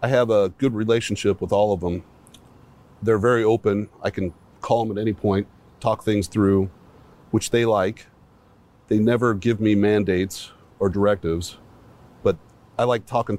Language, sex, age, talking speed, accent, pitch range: English, male, 40-59, 160 wpm, American, 95-115 Hz